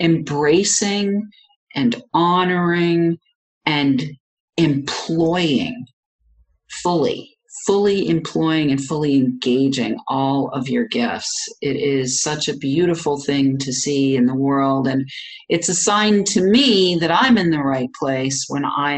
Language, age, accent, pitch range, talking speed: English, 40-59, American, 135-210 Hz, 125 wpm